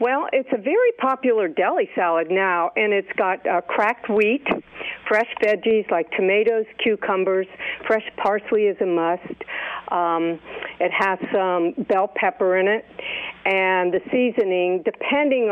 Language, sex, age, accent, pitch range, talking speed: English, female, 60-79, American, 180-220 Hz, 140 wpm